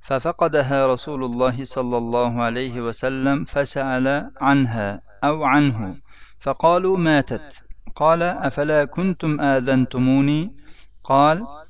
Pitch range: 115-135 Hz